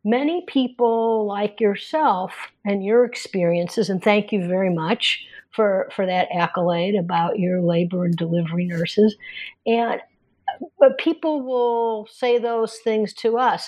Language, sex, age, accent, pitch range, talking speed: English, female, 50-69, American, 180-225 Hz, 135 wpm